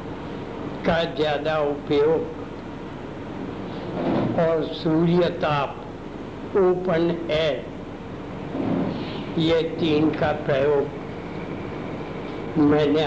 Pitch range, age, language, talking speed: 155-195 Hz, 60-79, Hindi, 50 wpm